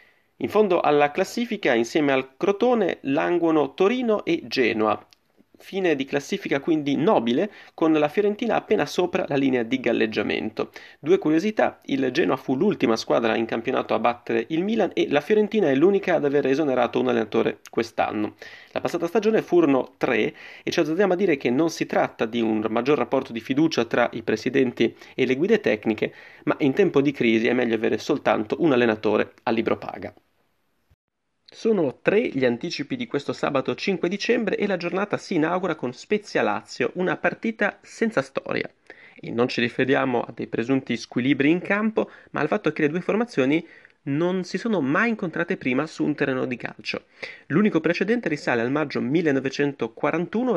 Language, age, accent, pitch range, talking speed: Italian, 30-49, native, 135-205 Hz, 170 wpm